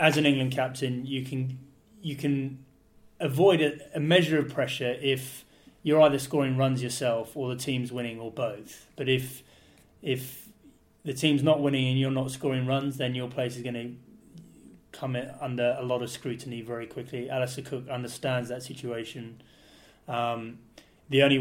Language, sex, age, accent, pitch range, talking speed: English, male, 20-39, British, 120-135 Hz, 170 wpm